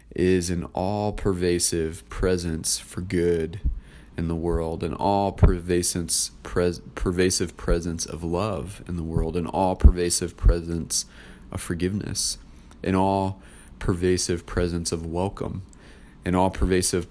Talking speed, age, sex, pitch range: 100 wpm, 30-49, male, 85-100 Hz